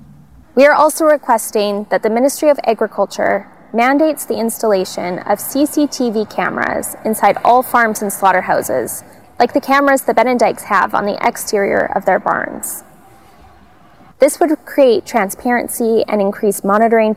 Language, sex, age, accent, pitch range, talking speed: English, female, 10-29, American, 205-250 Hz, 135 wpm